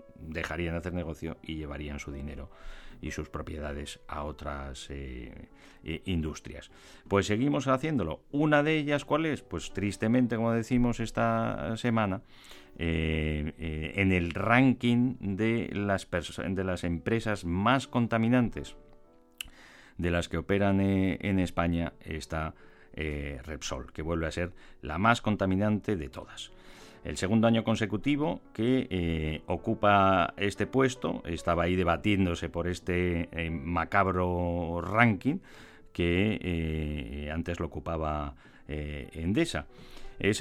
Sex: male